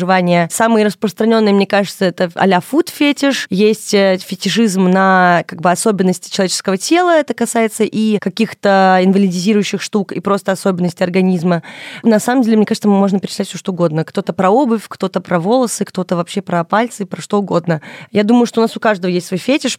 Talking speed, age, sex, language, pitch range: 180 wpm, 20-39, female, Russian, 180-215 Hz